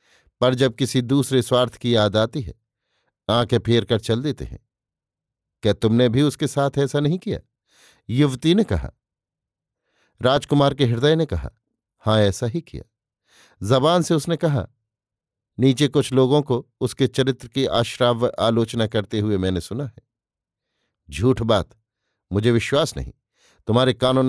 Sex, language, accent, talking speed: male, Hindi, native, 150 wpm